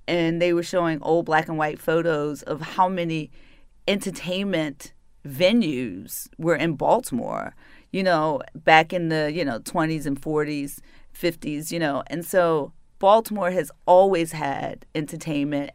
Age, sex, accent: 30-49, female, American